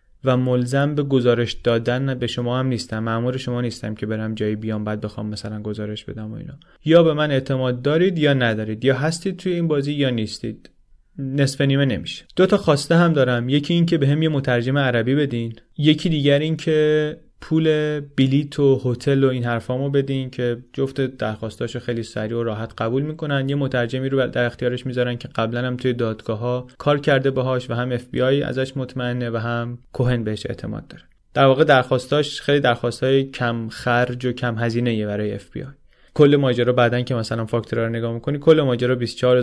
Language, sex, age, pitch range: Persian, male, 30-49, 120-145 Hz